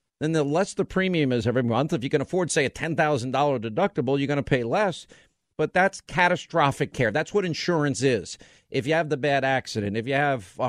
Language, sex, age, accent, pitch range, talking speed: English, male, 50-69, American, 140-185 Hz, 220 wpm